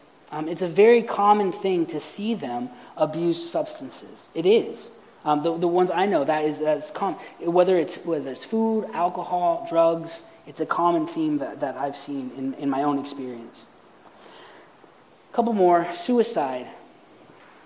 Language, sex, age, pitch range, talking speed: English, male, 30-49, 155-220 Hz, 165 wpm